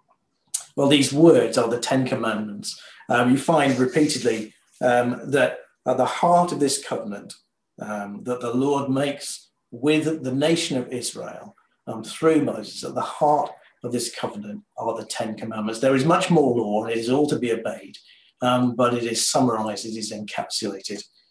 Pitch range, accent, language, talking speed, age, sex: 125-155 Hz, British, English, 175 wpm, 40-59, male